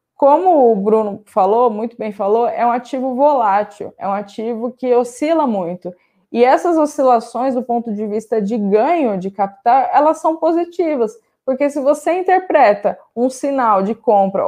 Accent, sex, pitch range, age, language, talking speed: Brazilian, female, 215-295 Hz, 20-39, Portuguese, 160 wpm